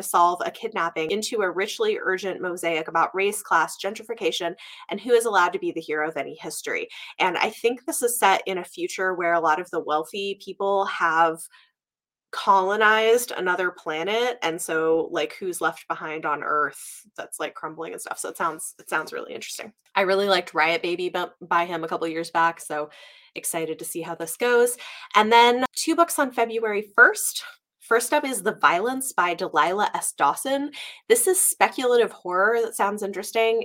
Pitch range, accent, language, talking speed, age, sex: 170-240 Hz, American, English, 185 wpm, 20-39, female